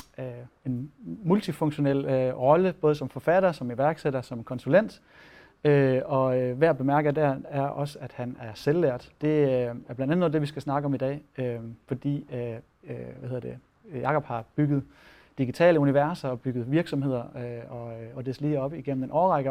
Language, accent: Danish, native